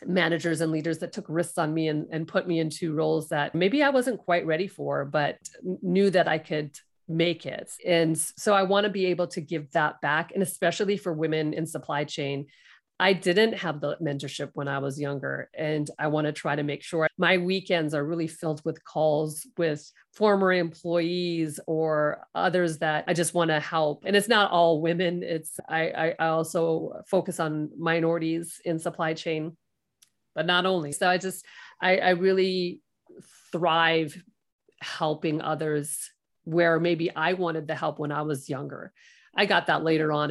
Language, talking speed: English, 185 wpm